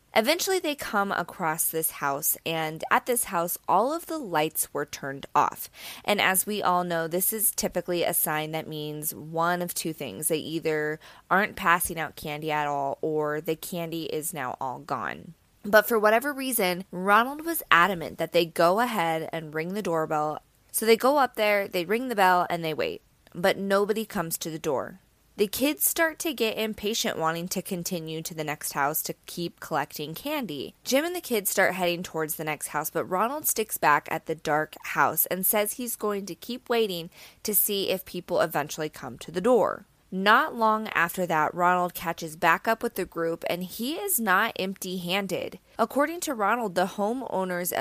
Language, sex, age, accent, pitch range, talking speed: English, female, 20-39, American, 160-220 Hz, 190 wpm